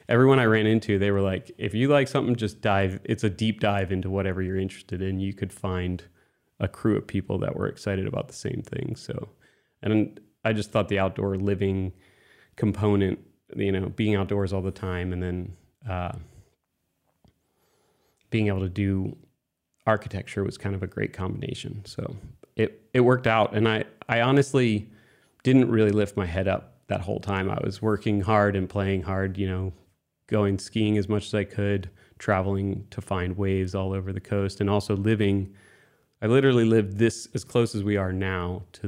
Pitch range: 95-110 Hz